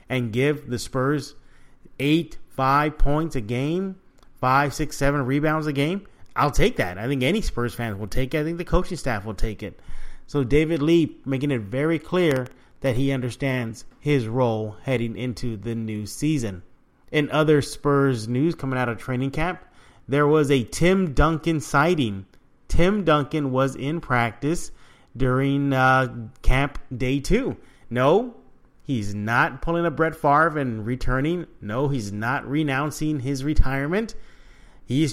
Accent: American